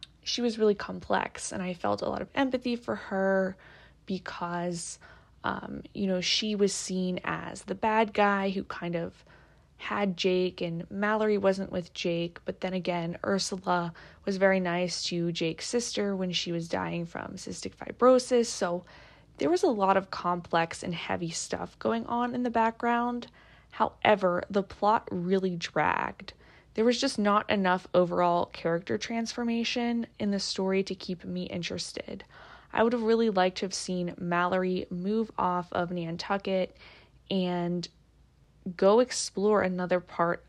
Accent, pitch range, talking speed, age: American, 175-210 Hz, 155 wpm, 20-39